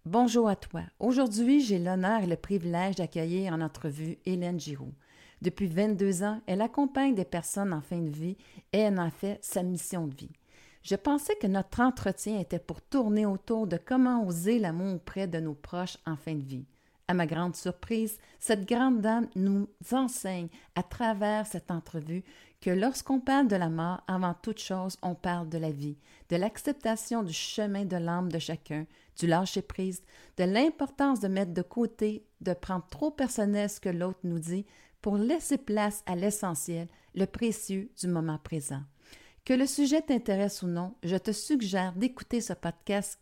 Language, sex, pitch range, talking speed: French, female, 175-220 Hz, 180 wpm